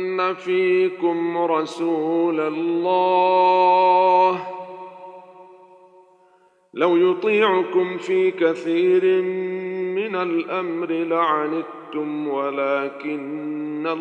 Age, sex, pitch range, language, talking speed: 50-69, male, 140-185 Hz, Arabic, 45 wpm